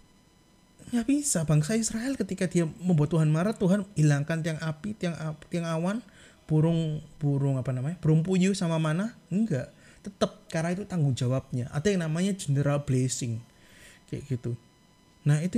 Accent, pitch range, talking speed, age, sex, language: native, 145-185 Hz, 140 wpm, 20-39, male, Indonesian